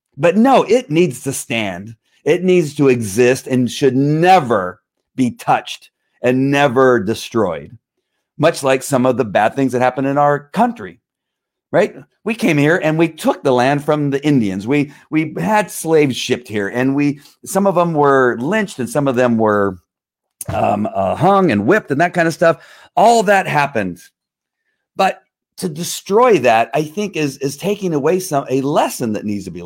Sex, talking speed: male, 185 wpm